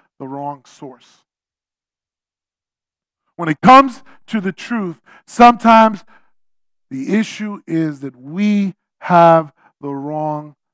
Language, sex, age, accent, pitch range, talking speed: English, male, 50-69, American, 155-220 Hz, 100 wpm